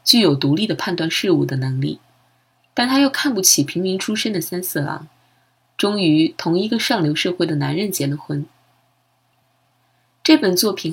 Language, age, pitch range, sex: Chinese, 20-39, 155-215 Hz, female